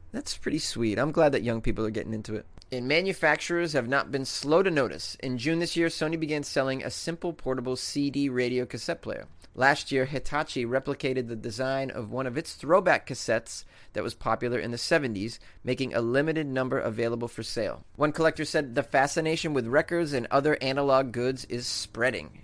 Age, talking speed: 30-49, 195 wpm